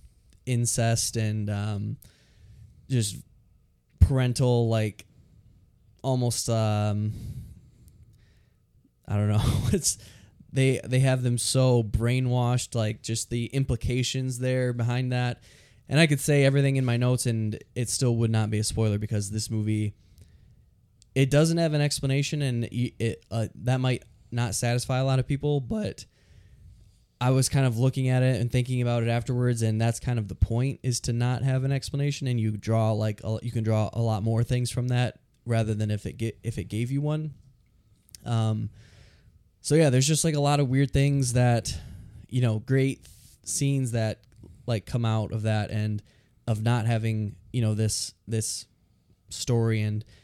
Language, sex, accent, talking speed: English, male, American, 170 wpm